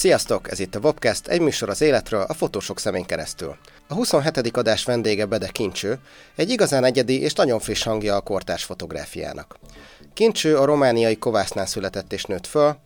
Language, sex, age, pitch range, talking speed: Hungarian, male, 30-49, 100-140 Hz, 175 wpm